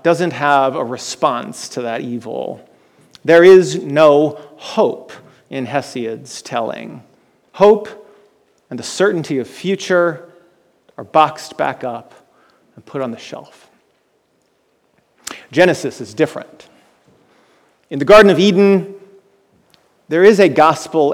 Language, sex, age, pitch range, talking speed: English, male, 40-59, 140-175 Hz, 115 wpm